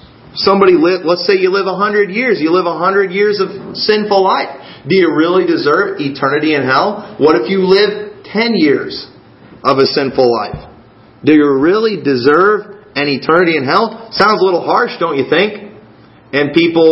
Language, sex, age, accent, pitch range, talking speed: English, male, 40-59, American, 140-205 Hz, 180 wpm